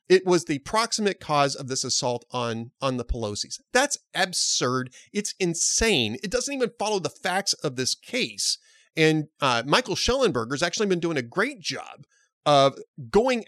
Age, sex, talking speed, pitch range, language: 30-49, male, 170 wpm, 135-205 Hz, English